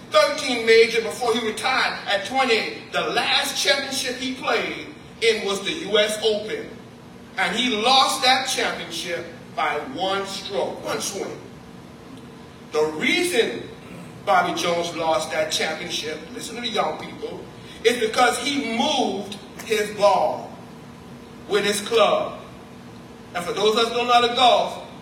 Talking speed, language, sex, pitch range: 140 wpm, English, male, 210-255 Hz